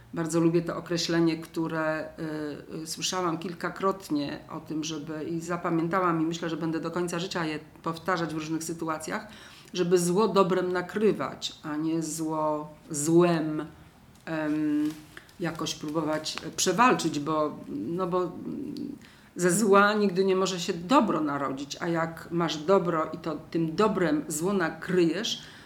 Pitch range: 165-205 Hz